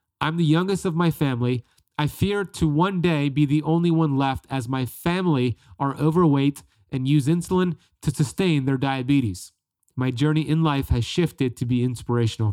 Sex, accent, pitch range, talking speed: male, American, 120-150 Hz, 175 wpm